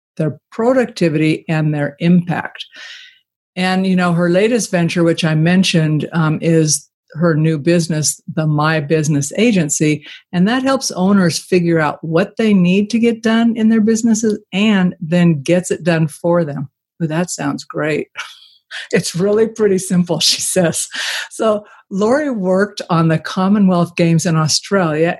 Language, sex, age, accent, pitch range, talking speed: English, female, 50-69, American, 155-200 Hz, 150 wpm